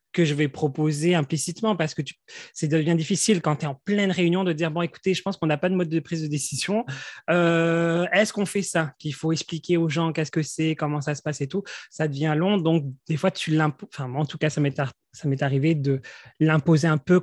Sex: male